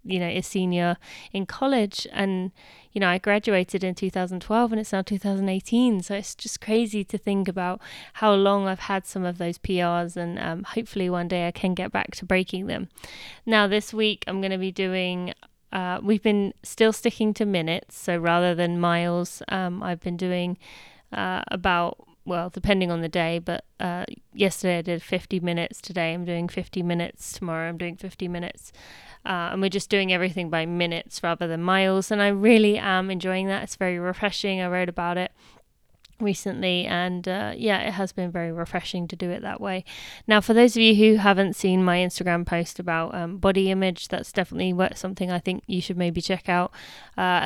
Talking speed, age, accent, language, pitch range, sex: 195 wpm, 20-39, British, English, 175-200 Hz, female